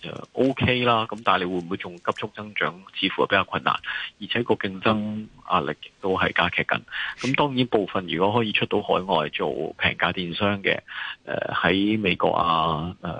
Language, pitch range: Chinese, 90-110 Hz